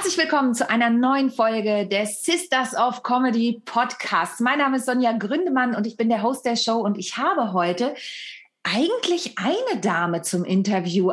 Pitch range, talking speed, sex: 205-280 Hz, 175 wpm, female